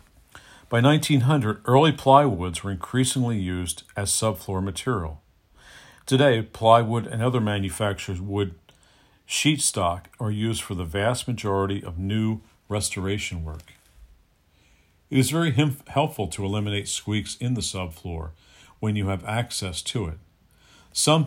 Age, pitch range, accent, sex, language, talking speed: 50-69, 90-115 Hz, American, male, English, 125 wpm